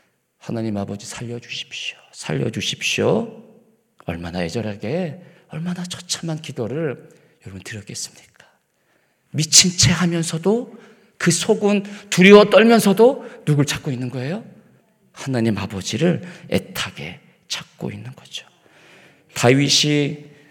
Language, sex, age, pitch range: Korean, male, 40-59, 125-170 Hz